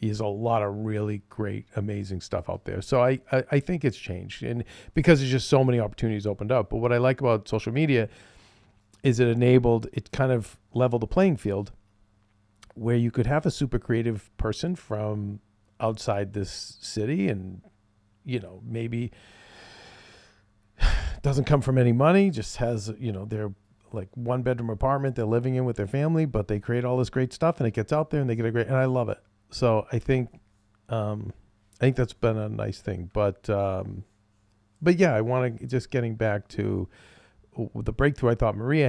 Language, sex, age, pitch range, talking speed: English, male, 40-59, 105-125 Hz, 195 wpm